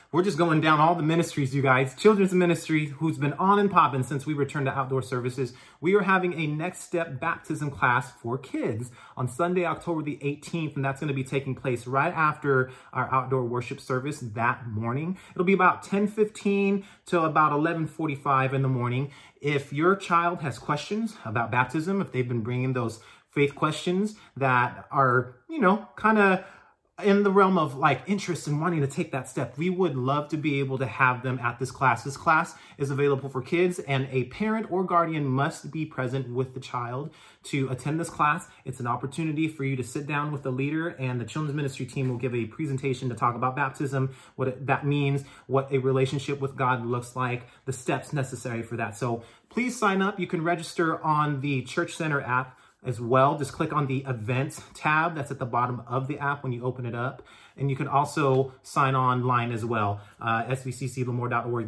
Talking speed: 200 wpm